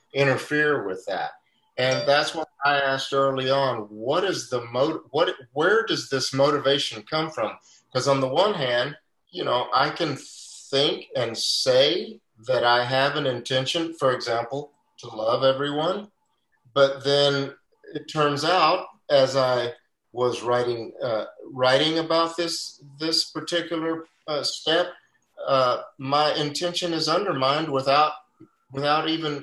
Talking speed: 140 wpm